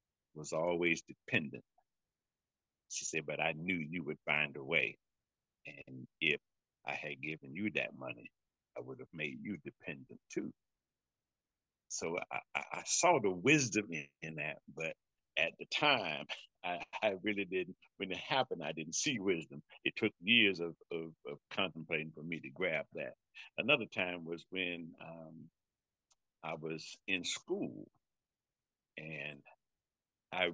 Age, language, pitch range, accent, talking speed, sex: 60-79, English, 75-90 Hz, American, 145 wpm, male